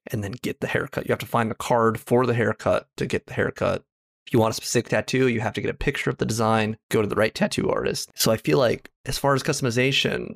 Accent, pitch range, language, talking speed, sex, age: American, 105-125 Hz, English, 270 wpm, male, 20-39